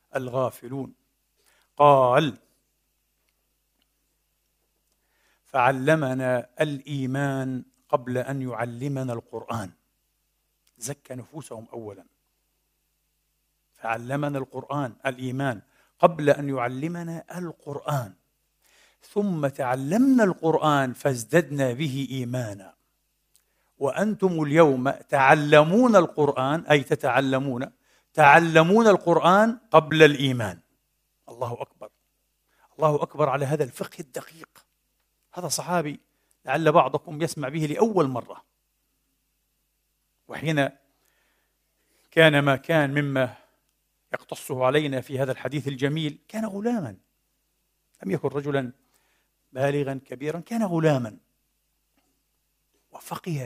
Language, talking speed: Arabic, 80 wpm